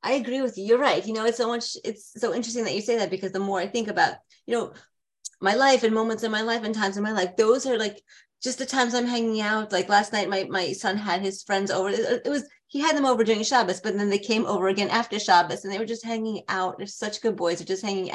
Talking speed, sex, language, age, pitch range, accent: 290 wpm, female, English, 30-49, 195-240 Hz, American